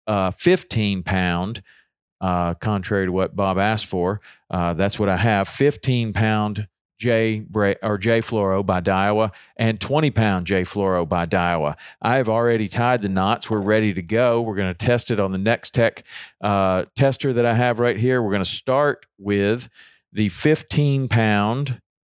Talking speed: 145 wpm